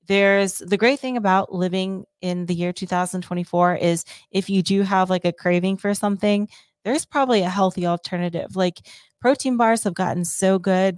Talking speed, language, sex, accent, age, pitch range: 175 wpm, English, female, American, 30-49, 175-200 Hz